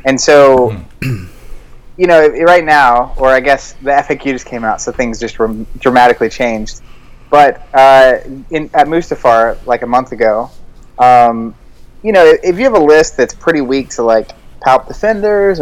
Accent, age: American, 20-39